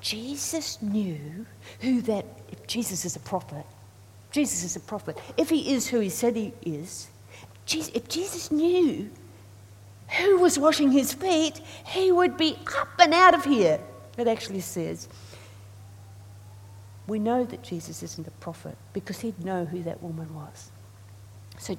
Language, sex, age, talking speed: English, female, 50-69, 150 wpm